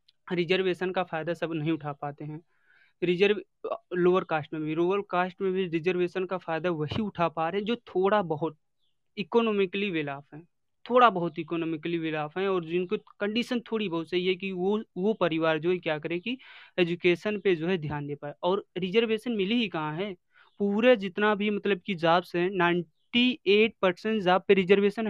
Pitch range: 165-210 Hz